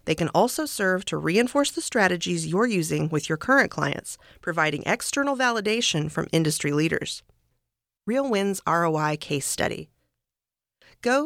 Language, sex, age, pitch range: English, female, 40-59, 160-235 Hz